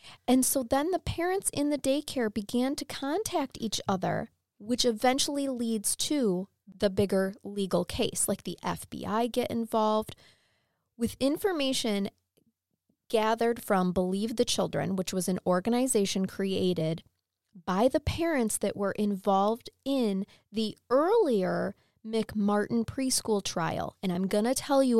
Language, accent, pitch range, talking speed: English, American, 195-255 Hz, 130 wpm